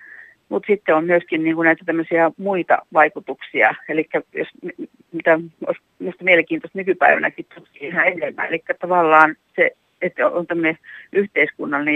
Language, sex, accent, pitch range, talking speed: Finnish, female, native, 155-195 Hz, 120 wpm